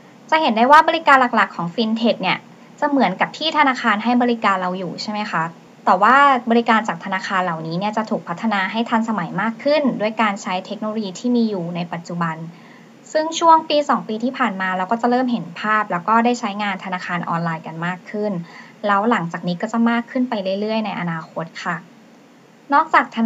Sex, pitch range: male, 195-255 Hz